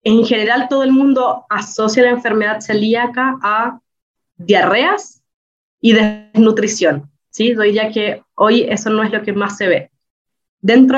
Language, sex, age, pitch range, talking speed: Romanian, female, 20-39, 200-240 Hz, 150 wpm